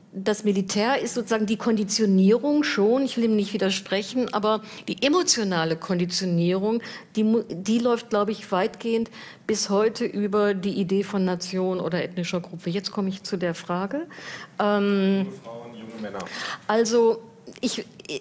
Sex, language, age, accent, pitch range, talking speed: female, German, 50-69, German, 185-215 Hz, 135 wpm